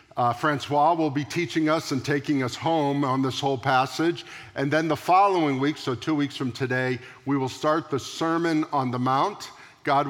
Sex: male